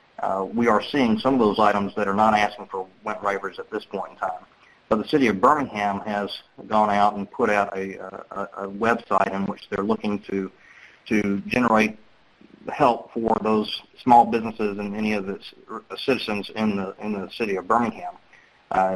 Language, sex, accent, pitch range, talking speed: English, male, American, 100-110 Hz, 190 wpm